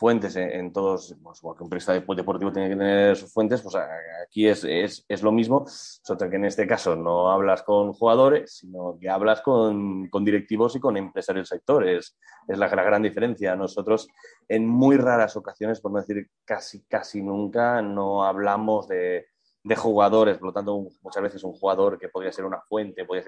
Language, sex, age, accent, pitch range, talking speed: Spanish, male, 20-39, Spanish, 100-115 Hz, 200 wpm